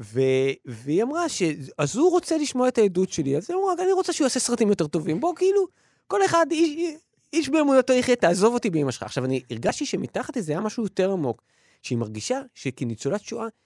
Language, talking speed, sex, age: Hebrew, 200 wpm, male, 30-49